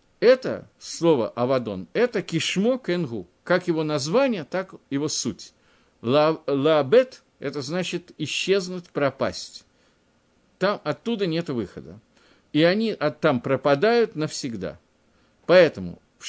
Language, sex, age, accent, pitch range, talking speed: Russian, male, 50-69, native, 135-200 Hz, 105 wpm